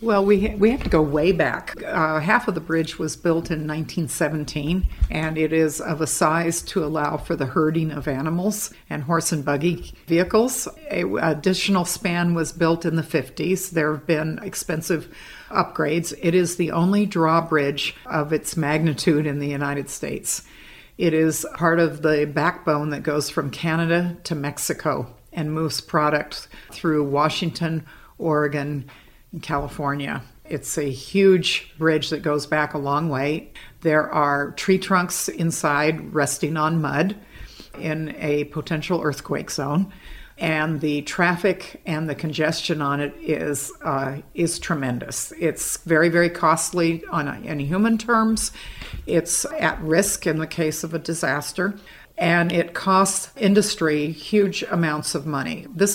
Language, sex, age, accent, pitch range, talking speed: English, female, 60-79, American, 150-175 Hz, 150 wpm